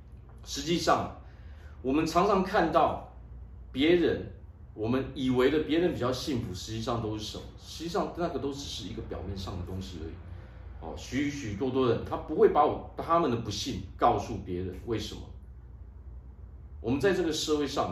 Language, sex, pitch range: Chinese, male, 85-115 Hz